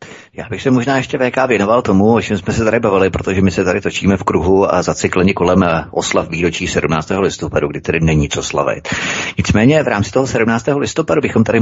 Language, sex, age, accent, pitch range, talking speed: Czech, male, 30-49, native, 90-105 Hz, 210 wpm